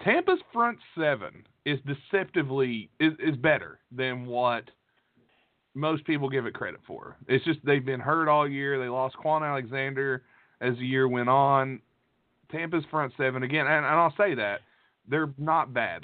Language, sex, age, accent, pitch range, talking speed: English, male, 30-49, American, 130-160 Hz, 170 wpm